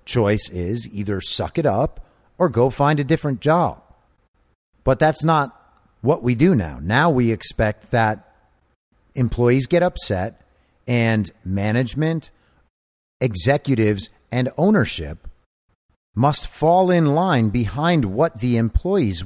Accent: American